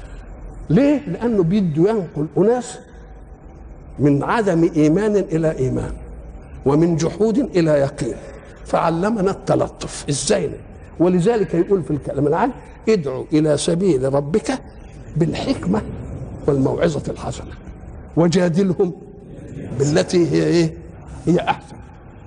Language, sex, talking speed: Arabic, male, 95 wpm